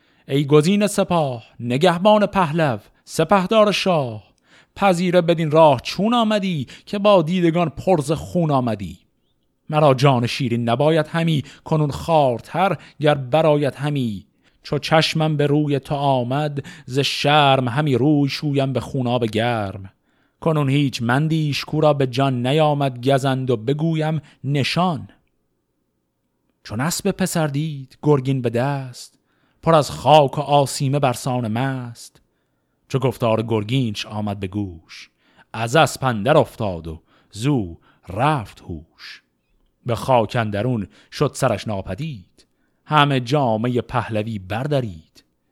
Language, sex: Persian, male